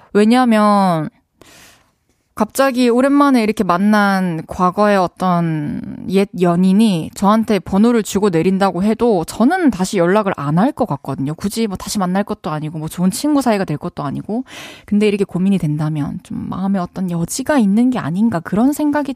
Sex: female